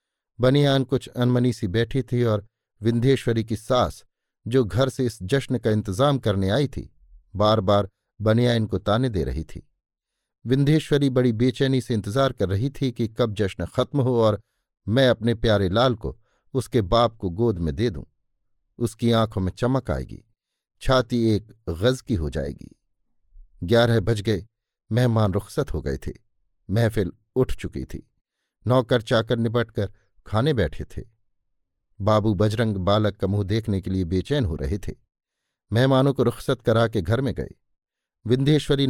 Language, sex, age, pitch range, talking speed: Hindi, male, 50-69, 100-125 Hz, 160 wpm